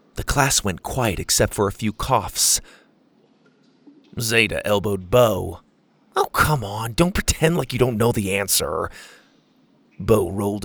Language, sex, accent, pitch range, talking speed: English, male, American, 115-195 Hz, 140 wpm